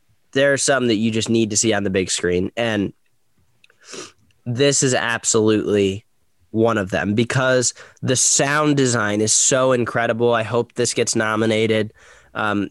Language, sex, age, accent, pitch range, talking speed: English, male, 10-29, American, 110-125 Hz, 155 wpm